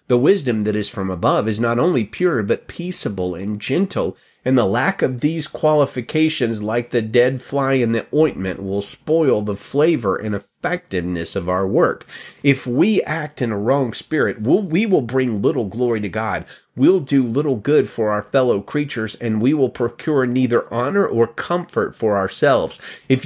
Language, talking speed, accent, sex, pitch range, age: English, 180 wpm, American, male, 110-150 Hz, 30-49